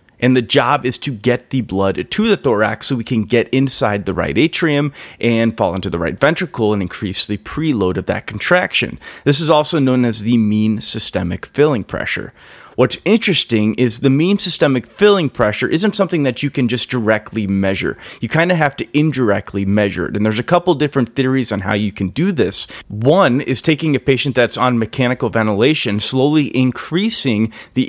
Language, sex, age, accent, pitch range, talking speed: English, male, 30-49, American, 110-145 Hz, 195 wpm